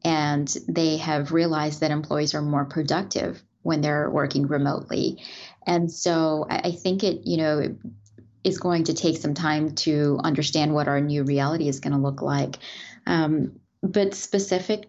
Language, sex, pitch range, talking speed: English, female, 150-185 Hz, 165 wpm